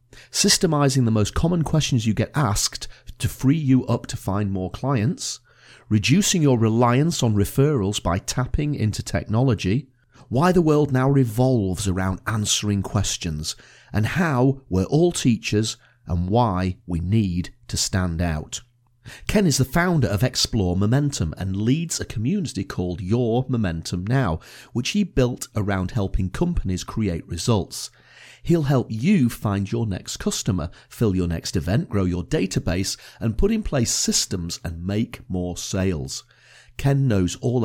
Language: English